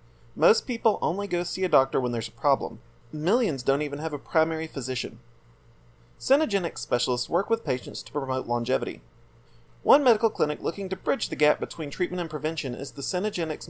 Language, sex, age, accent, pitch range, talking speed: English, male, 30-49, American, 125-180 Hz, 180 wpm